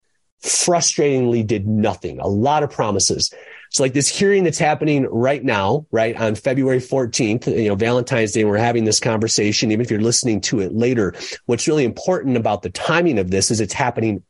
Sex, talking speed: male, 190 wpm